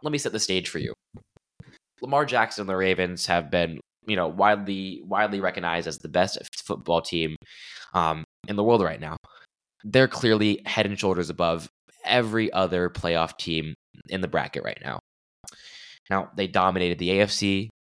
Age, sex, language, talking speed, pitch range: 10-29, male, English, 170 wpm, 80-100 Hz